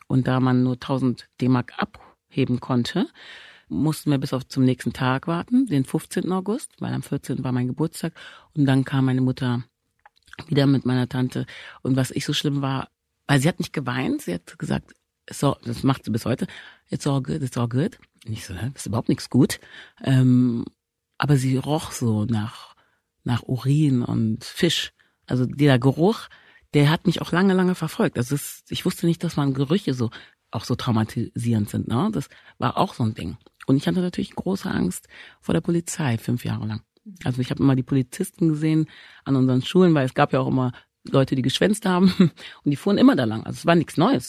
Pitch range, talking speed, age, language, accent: 125-165 Hz, 205 wpm, 40-59, German, German